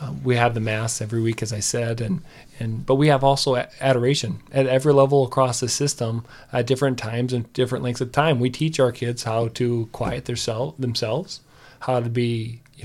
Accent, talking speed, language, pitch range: American, 205 wpm, English, 120-135 Hz